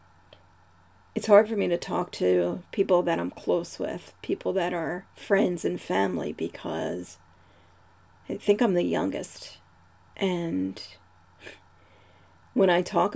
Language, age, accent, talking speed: English, 40-59, American, 130 wpm